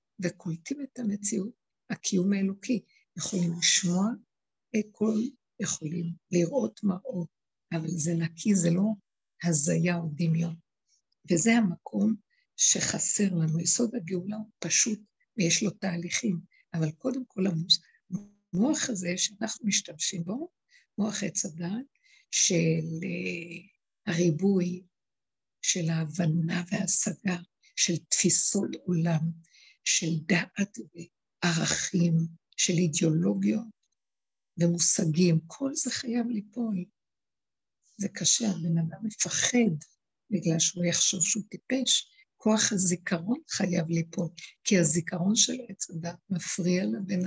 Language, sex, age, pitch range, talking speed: Hebrew, female, 60-79, 170-215 Hz, 100 wpm